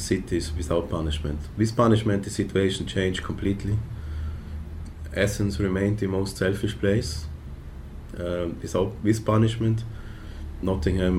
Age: 30-49